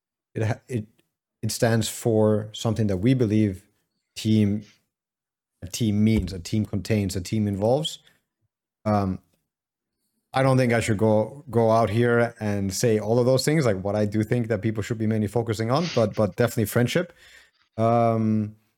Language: English